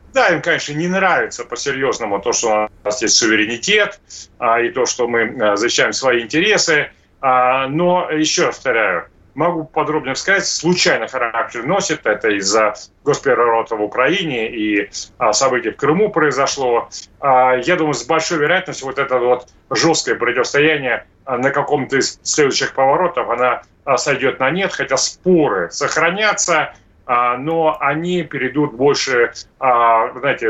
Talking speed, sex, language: 130 wpm, male, Russian